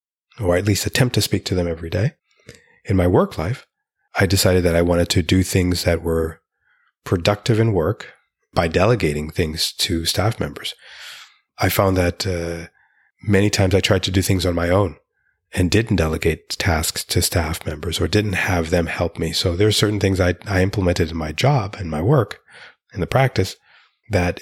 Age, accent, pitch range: 30-49, American, 85-100 Hz